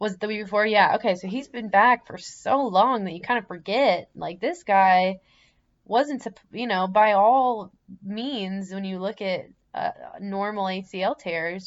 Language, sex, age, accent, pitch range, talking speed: English, female, 20-39, American, 180-215 Hz, 185 wpm